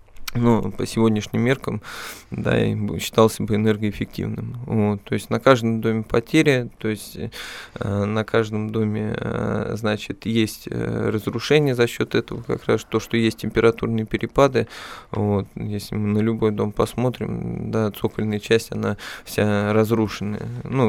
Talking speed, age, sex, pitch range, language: 130 wpm, 20-39, male, 105-115 Hz, Russian